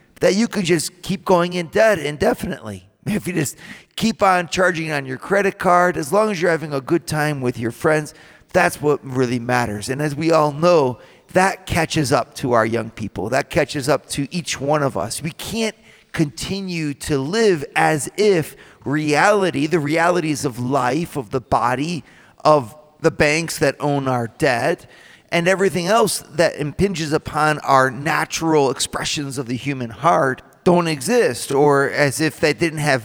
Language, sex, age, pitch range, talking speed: English, male, 40-59, 140-180 Hz, 175 wpm